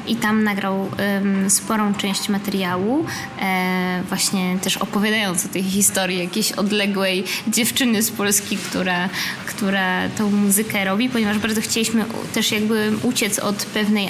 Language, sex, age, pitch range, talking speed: Polish, female, 20-39, 195-230 Hz, 130 wpm